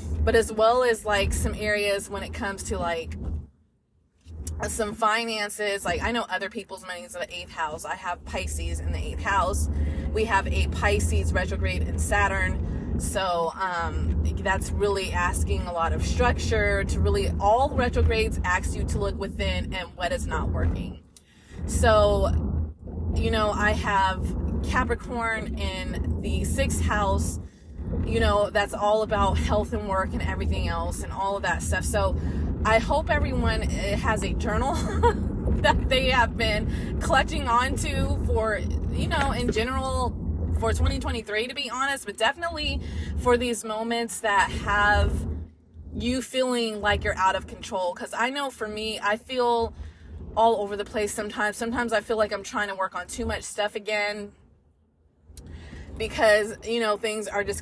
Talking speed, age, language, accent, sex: 160 wpm, 20-39, English, American, female